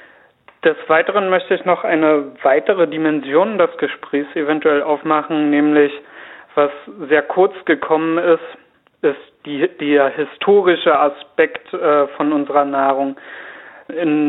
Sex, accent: male, German